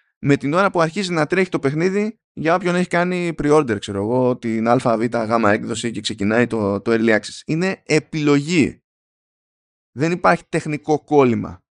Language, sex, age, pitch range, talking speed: Greek, male, 20-39, 120-185 Hz, 160 wpm